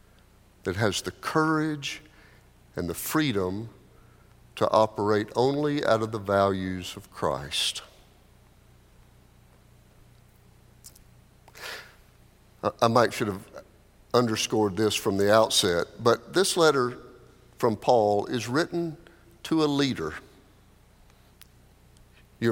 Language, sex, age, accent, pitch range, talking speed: English, male, 50-69, American, 105-145 Hz, 95 wpm